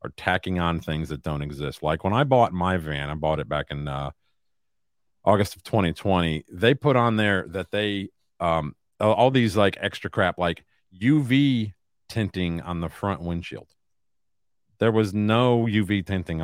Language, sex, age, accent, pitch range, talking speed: English, male, 50-69, American, 85-110 Hz, 170 wpm